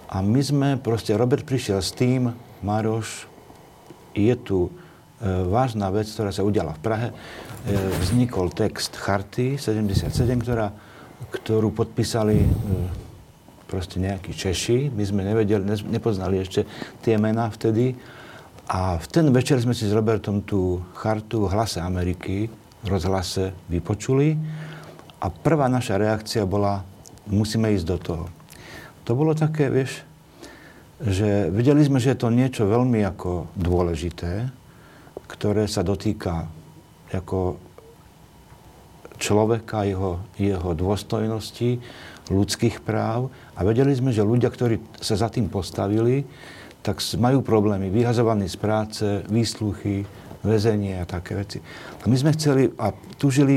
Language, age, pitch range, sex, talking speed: Slovak, 50-69, 100-120 Hz, male, 130 wpm